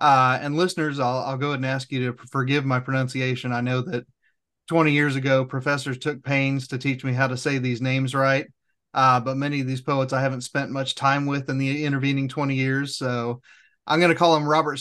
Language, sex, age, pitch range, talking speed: English, male, 30-49, 130-145 Hz, 225 wpm